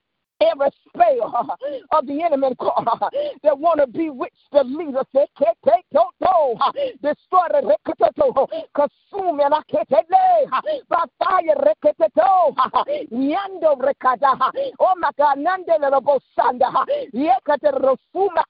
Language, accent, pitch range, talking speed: English, American, 280-360 Hz, 105 wpm